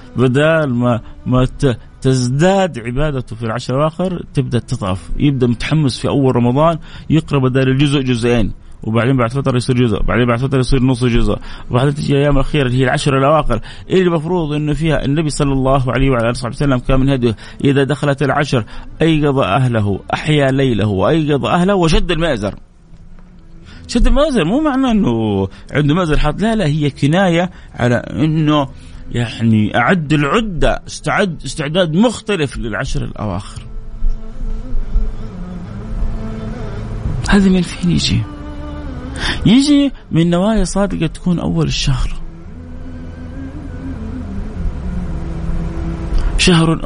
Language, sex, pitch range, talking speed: Arabic, male, 110-150 Hz, 125 wpm